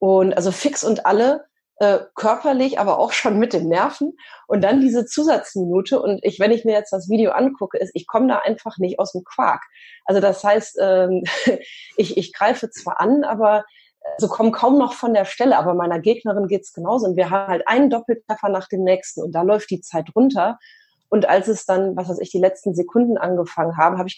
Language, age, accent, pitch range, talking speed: German, 30-49, German, 185-260 Hz, 215 wpm